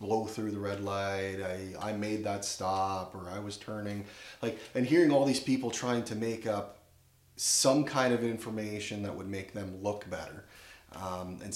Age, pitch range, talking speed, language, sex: 30-49, 95-115 Hz, 185 wpm, English, male